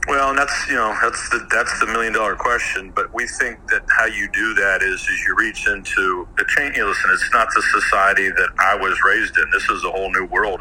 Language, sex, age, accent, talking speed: English, male, 50-69, American, 245 wpm